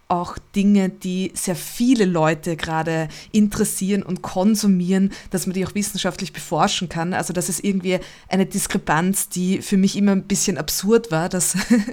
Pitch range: 180-205 Hz